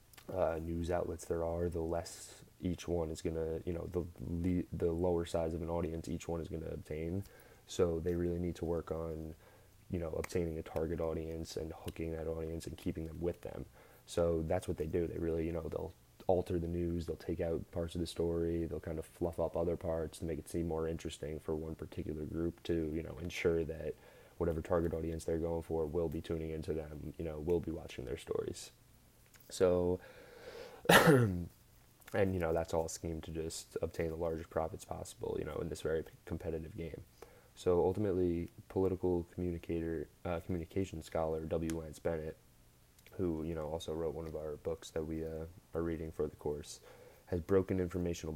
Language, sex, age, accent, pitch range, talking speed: English, male, 20-39, American, 80-85 Hz, 195 wpm